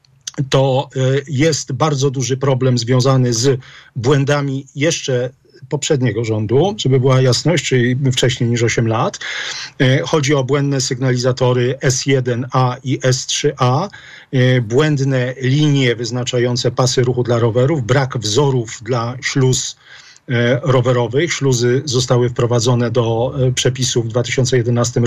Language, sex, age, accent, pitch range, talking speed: Polish, male, 40-59, native, 125-140 Hz, 110 wpm